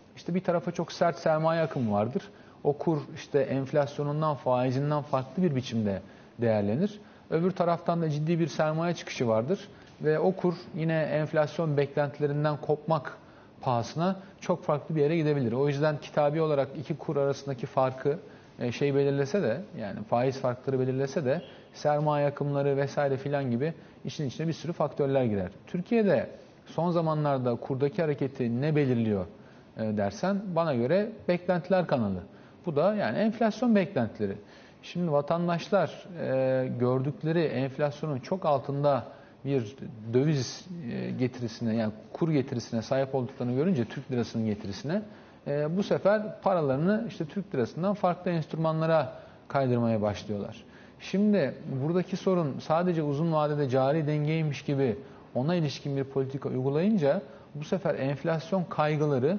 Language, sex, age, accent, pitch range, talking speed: Turkish, male, 40-59, native, 130-170 Hz, 130 wpm